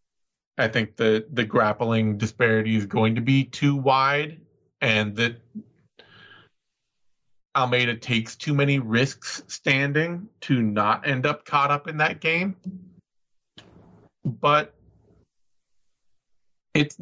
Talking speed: 110 wpm